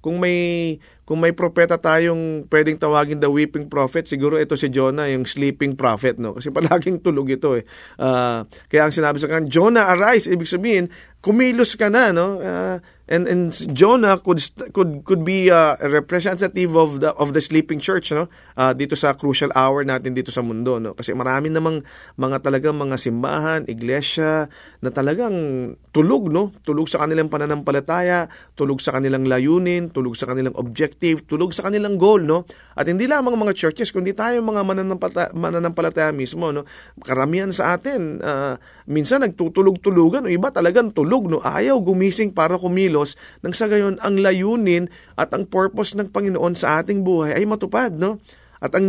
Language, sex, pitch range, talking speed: English, male, 145-190 Hz, 170 wpm